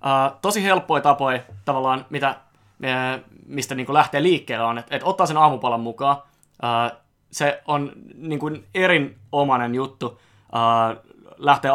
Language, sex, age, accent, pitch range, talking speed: Finnish, male, 20-39, native, 120-145 Hz, 135 wpm